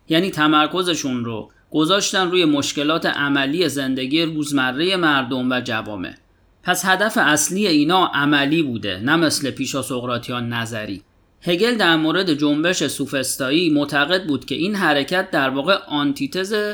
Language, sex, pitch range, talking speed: Persian, male, 135-170 Hz, 125 wpm